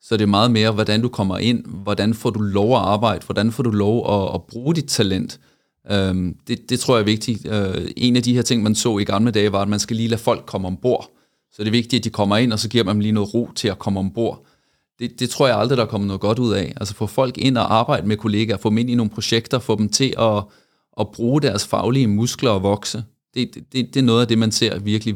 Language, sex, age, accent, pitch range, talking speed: Danish, male, 30-49, native, 100-115 Hz, 280 wpm